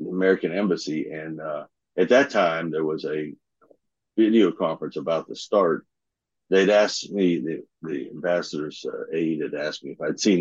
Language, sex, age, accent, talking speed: English, male, 60-79, American, 160 wpm